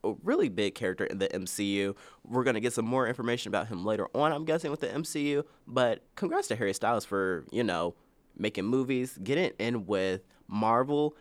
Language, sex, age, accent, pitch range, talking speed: English, male, 20-39, American, 100-145 Hz, 185 wpm